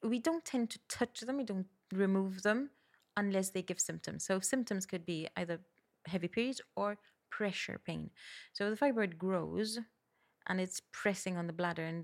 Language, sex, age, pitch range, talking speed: English, female, 30-49, 165-200 Hz, 175 wpm